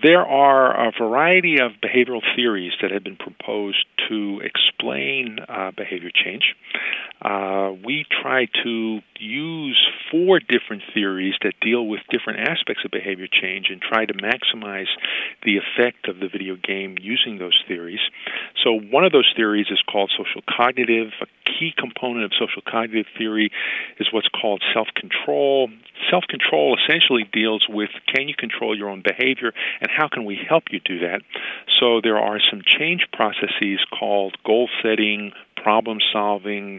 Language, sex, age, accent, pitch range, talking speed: English, male, 50-69, American, 100-125 Hz, 150 wpm